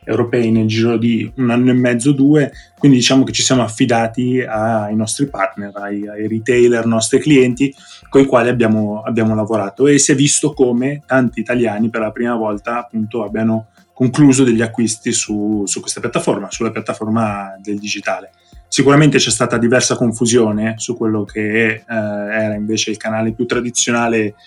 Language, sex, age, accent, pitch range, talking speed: Italian, male, 20-39, native, 110-125 Hz, 170 wpm